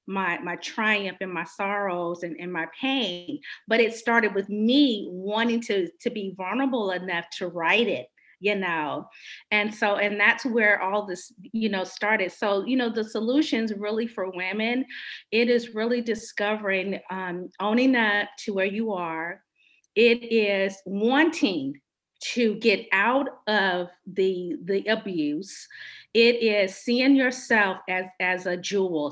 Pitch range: 190-235 Hz